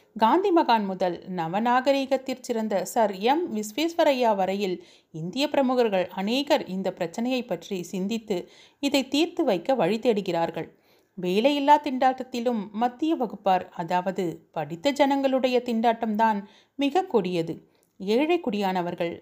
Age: 30-49